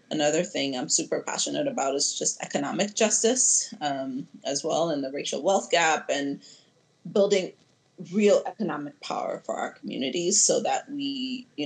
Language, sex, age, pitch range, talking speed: English, female, 30-49, 145-220 Hz, 155 wpm